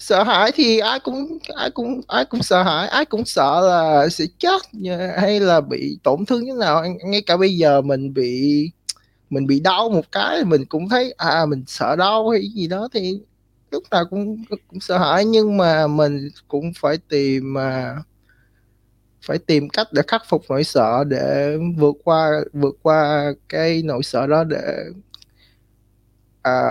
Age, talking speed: 20-39, 175 wpm